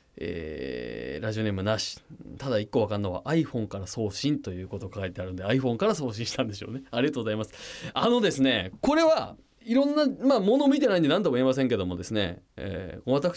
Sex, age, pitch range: male, 20-39, 105-175 Hz